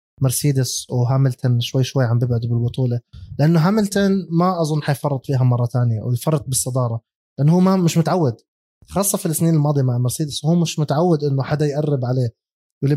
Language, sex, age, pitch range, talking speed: Arabic, male, 20-39, 130-165 Hz, 165 wpm